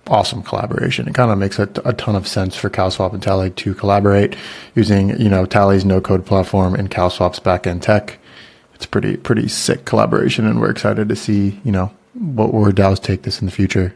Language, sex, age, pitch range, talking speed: English, male, 30-49, 95-115 Hz, 205 wpm